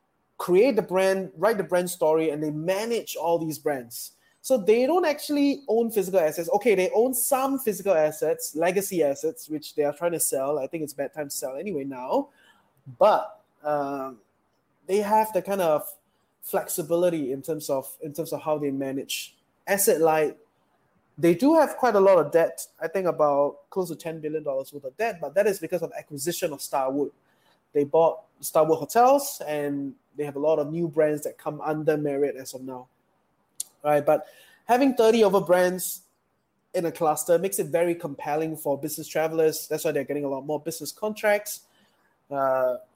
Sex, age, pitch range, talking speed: male, 20-39, 145-195 Hz, 185 wpm